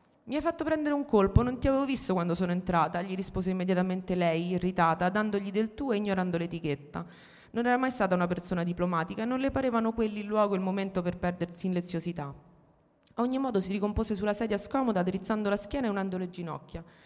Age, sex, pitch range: 30-49, female, 175-220 Hz